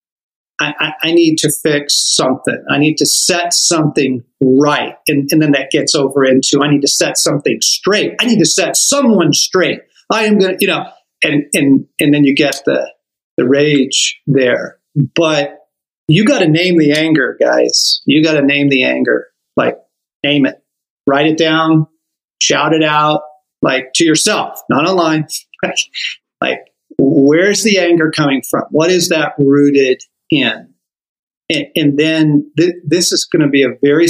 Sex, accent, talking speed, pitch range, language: male, American, 170 wpm, 140-165 Hz, English